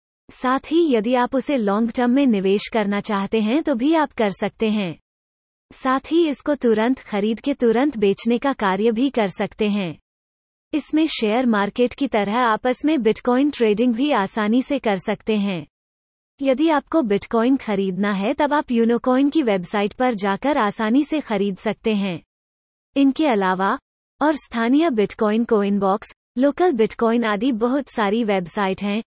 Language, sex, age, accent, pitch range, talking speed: English, female, 30-49, Indian, 200-270 Hz, 115 wpm